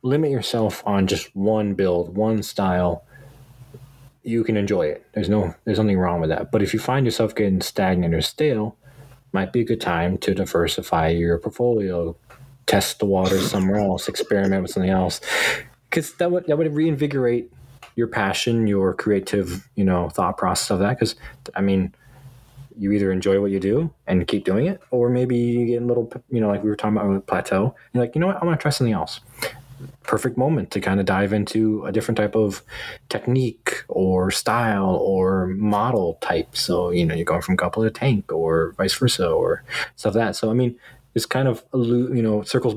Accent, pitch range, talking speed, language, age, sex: American, 95-125 Hz, 200 wpm, English, 20-39, male